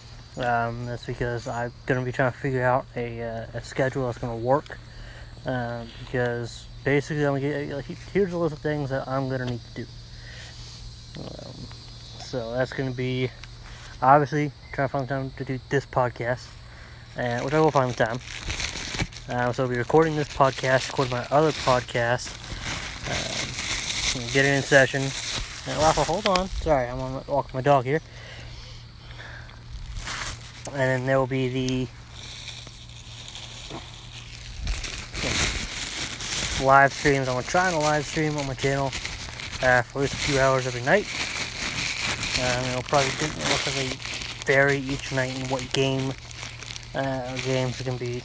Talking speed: 155 wpm